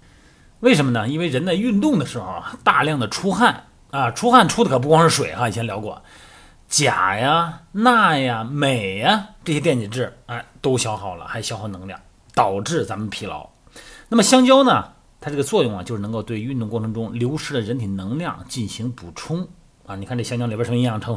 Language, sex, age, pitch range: Chinese, male, 30-49, 115-165 Hz